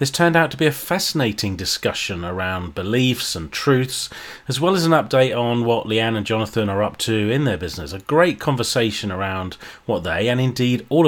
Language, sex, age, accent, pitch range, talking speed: English, male, 30-49, British, 105-130 Hz, 200 wpm